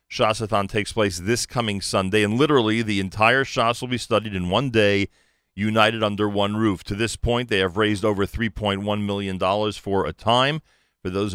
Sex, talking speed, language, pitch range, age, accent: male, 200 wpm, English, 95-115 Hz, 40-59, American